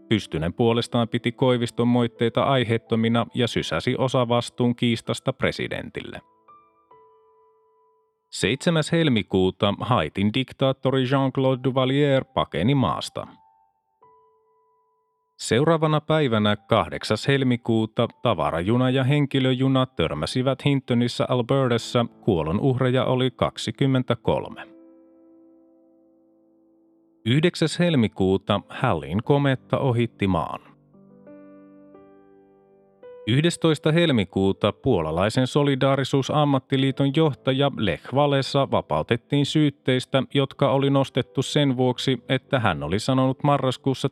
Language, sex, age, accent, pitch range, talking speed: Finnish, male, 30-49, native, 110-140 Hz, 80 wpm